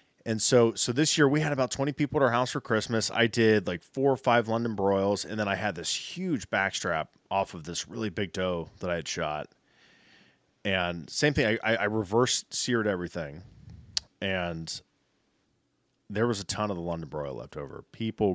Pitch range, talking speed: 95-125 Hz, 195 wpm